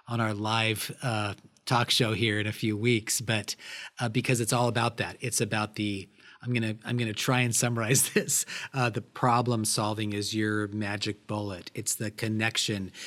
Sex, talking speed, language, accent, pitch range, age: male, 195 wpm, English, American, 105-125 Hz, 40-59